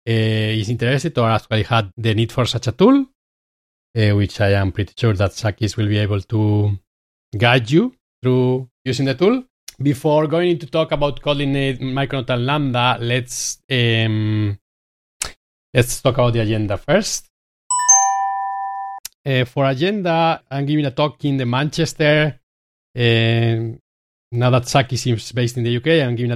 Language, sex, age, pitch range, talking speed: English, male, 30-49, 115-140 Hz, 155 wpm